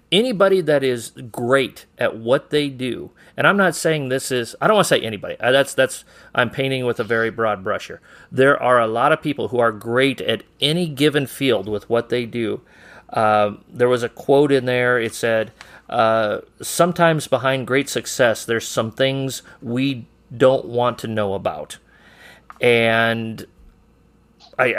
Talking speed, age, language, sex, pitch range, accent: 170 wpm, 40-59, English, male, 110-130 Hz, American